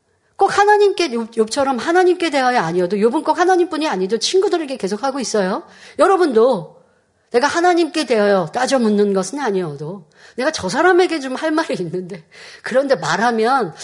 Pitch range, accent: 210-310 Hz, native